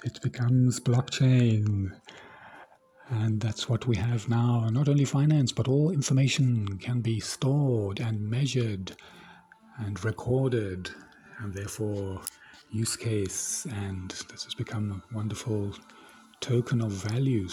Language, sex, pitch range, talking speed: English, male, 110-135 Hz, 120 wpm